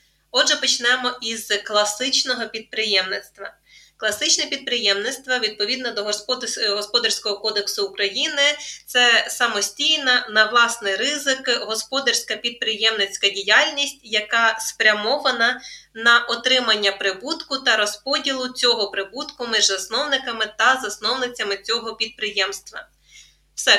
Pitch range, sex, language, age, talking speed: 215-255 Hz, female, Ukrainian, 20-39, 90 wpm